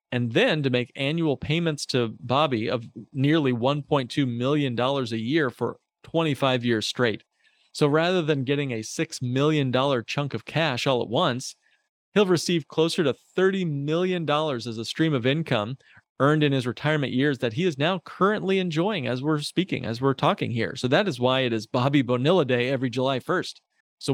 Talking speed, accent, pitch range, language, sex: 180 wpm, American, 125-165 Hz, English, male